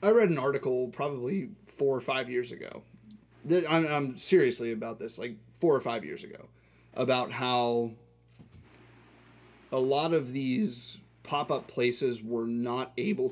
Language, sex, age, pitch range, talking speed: English, male, 30-49, 115-140 Hz, 145 wpm